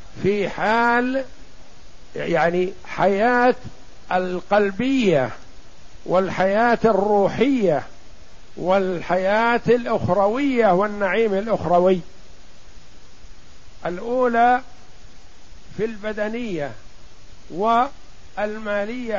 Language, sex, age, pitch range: Arabic, male, 50-69, 185-225 Hz